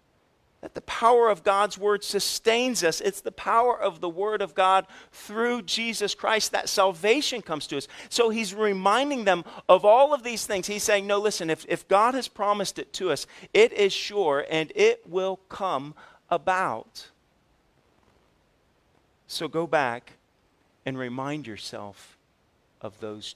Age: 40-59